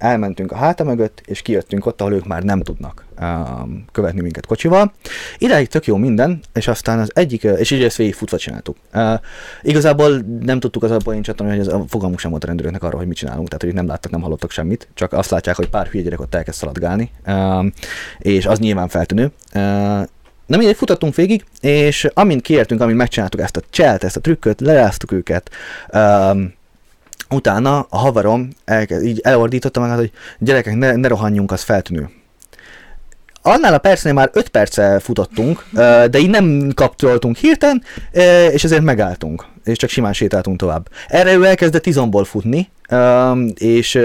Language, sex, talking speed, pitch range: Hungarian, male, 175 wpm, 95-125 Hz